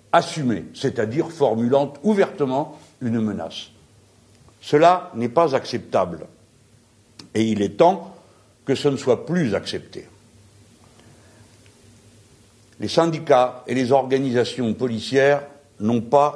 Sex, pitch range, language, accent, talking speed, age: male, 110-155 Hz, French, French, 105 wpm, 60-79